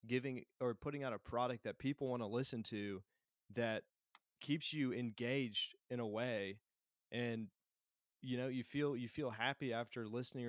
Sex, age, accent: male, 20-39, American